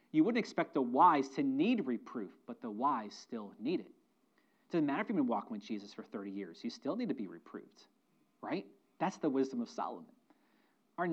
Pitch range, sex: 170-235 Hz, male